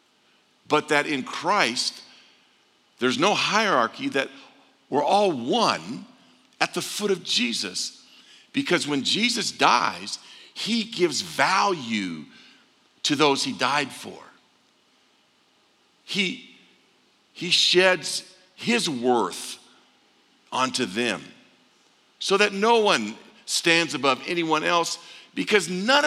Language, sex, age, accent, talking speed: English, male, 50-69, American, 105 wpm